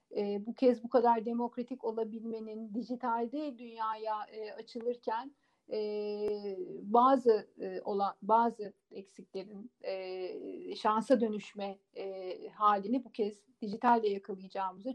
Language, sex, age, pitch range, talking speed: Turkish, female, 50-69, 210-250 Hz, 105 wpm